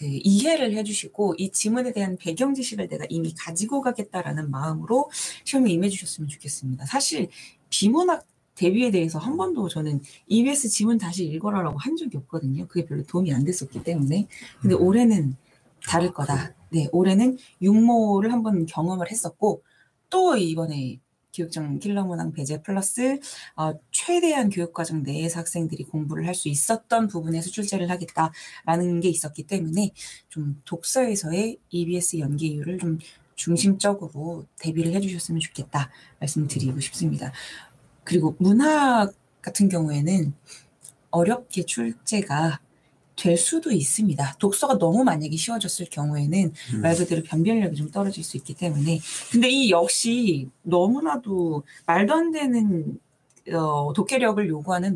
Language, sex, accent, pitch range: Korean, female, native, 155-210 Hz